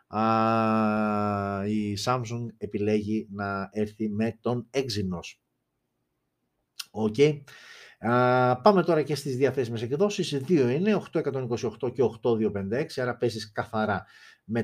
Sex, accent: male, native